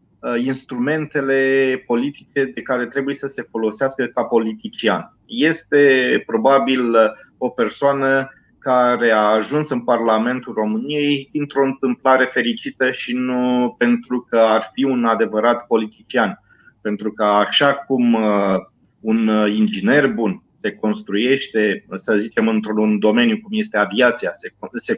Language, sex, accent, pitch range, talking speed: Romanian, male, native, 115-150 Hz, 120 wpm